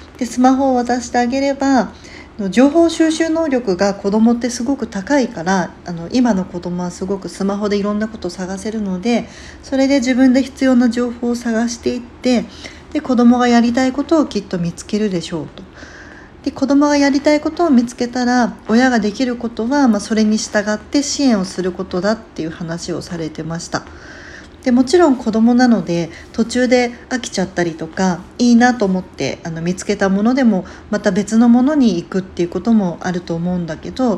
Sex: female